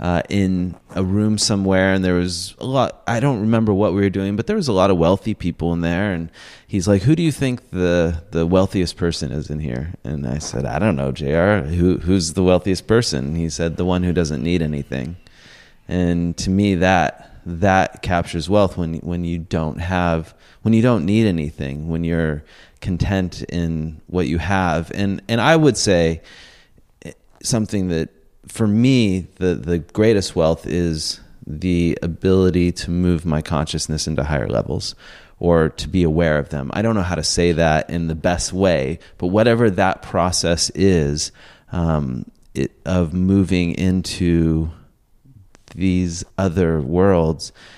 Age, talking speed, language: 30-49, 175 wpm, English